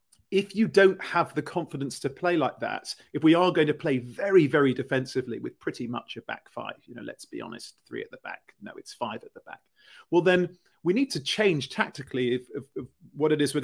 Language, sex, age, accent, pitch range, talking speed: English, male, 30-49, British, 125-150 Hz, 240 wpm